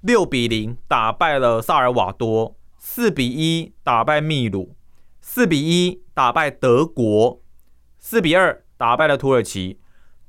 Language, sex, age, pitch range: Chinese, male, 20-39, 110-160 Hz